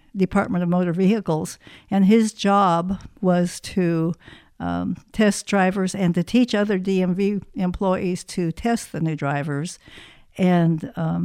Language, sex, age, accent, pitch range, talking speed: English, female, 60-79, American, 175-205 Hz, 130 wpm